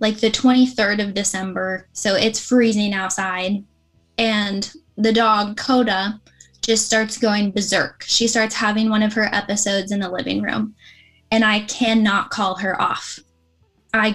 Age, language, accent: 10-29, English, American